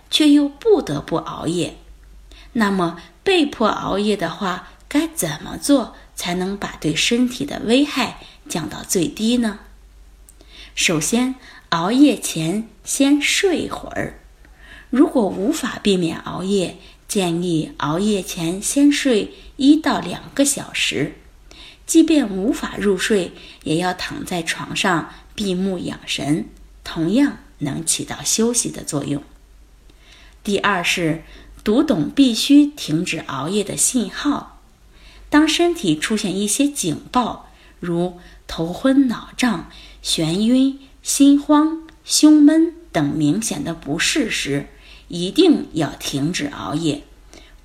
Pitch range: 175-280 Hz